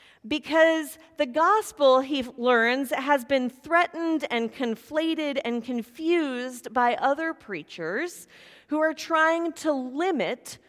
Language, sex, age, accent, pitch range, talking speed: English, female, 40-59, American, 220-310 Hz, 110 wpm